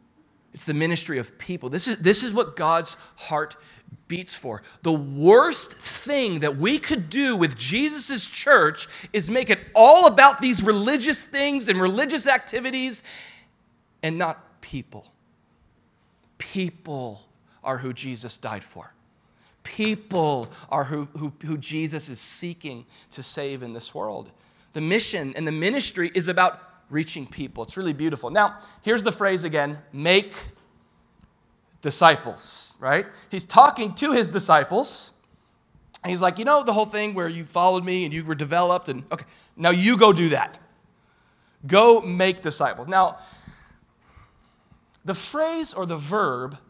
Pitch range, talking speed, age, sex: 155-220 Hz, 145 wpm, 30-49, male